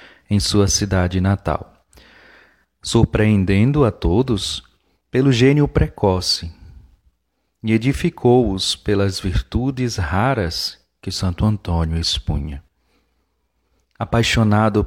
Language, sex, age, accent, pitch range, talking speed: Portuguese, male, 40-59, Brazilian, 90-120 Hz, 80 wpm